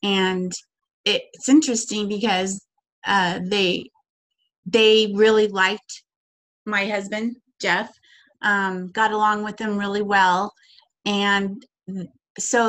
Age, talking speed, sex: 30-49, 100 wpm, female